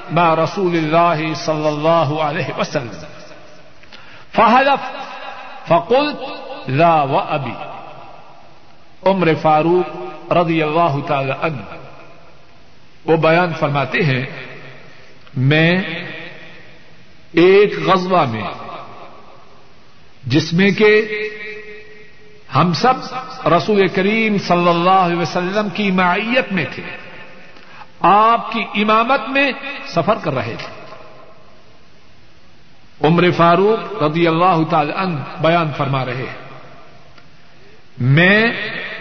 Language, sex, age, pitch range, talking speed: Urdu, male, 60-79, 155-210 Hz, 90 wpm